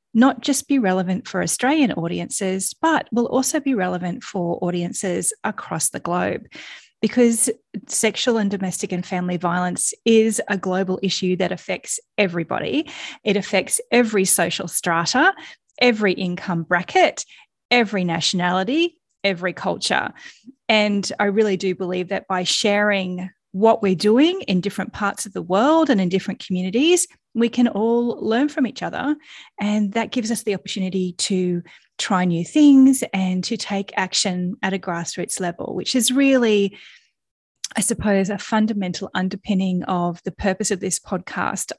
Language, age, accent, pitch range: English, 30-49, Australian, 185-235 Hz